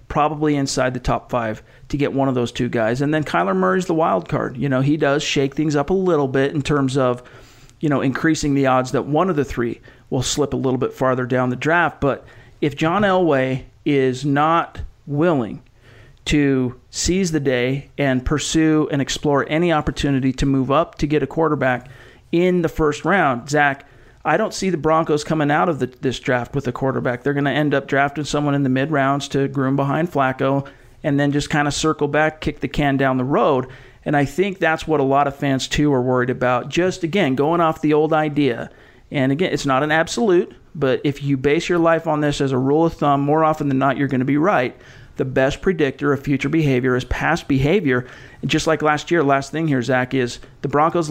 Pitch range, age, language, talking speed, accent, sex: 130-155 Hz, 40-59, English, 220 wpm, American, male